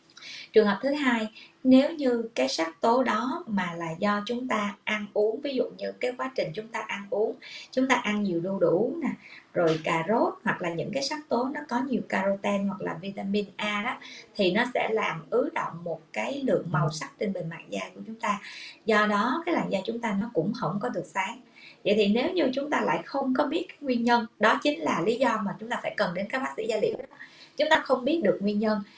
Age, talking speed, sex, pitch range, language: 20-39, 245 wpm, female, 200-255 Hz, Vietnamese